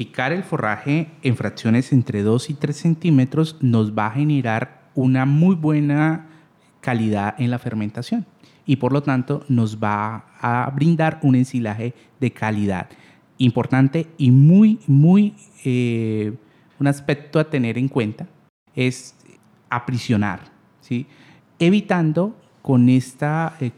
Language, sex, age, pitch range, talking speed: Spanish, male, 30-49, 115-160 Hz, 130 wpm